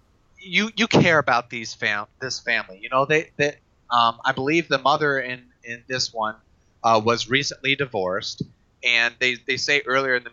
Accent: American